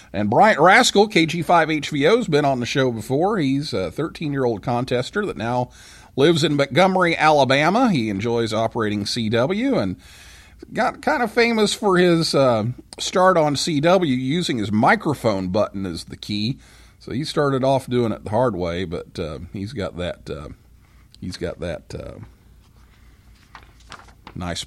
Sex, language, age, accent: male, English, 40-59, American